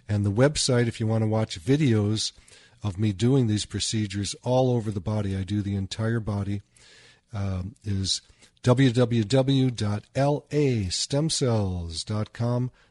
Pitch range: 105-120 Hz